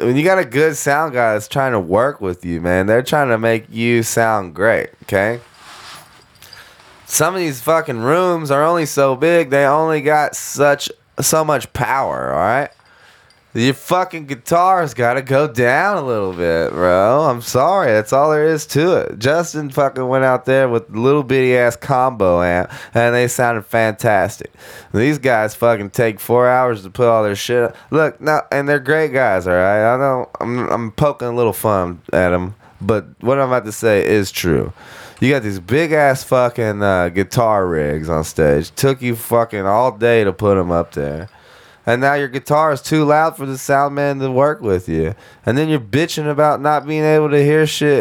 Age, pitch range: 20-39, 105-145 Hz